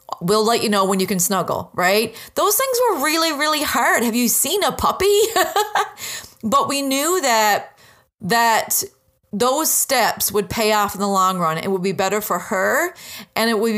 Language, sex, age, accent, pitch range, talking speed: English, female, 30-49, American, 195-250 Hz, 185 wpm